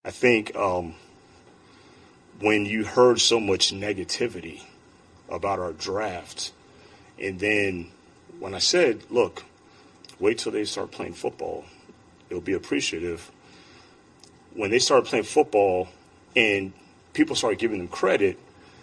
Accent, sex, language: American, male, English